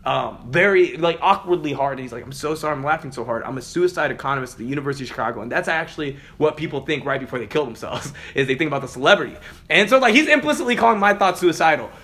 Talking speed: 250 wpm